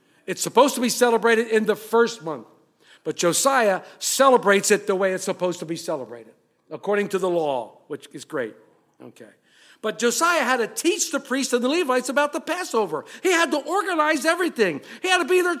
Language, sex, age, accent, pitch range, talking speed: English, male, 50-69, American, 200-280 Hz, 195 wpm